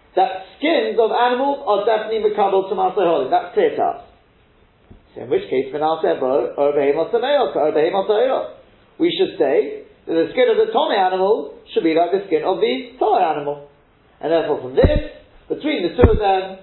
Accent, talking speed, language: British, 170 wpm, English